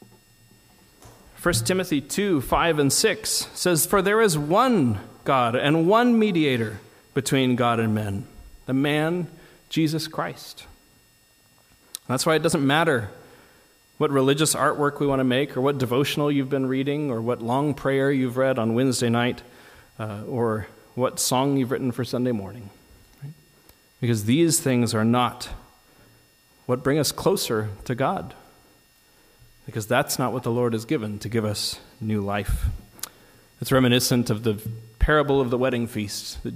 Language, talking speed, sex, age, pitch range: English, 155 wpm, male, 40-59, 110-140 Hz